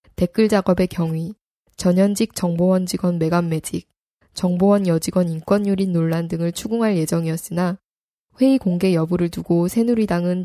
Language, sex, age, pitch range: Korean, female, 10-29, 175-205 Hz